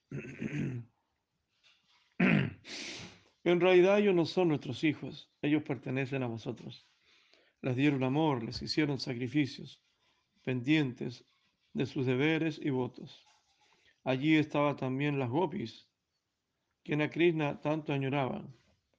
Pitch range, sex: 130-160 Hz, male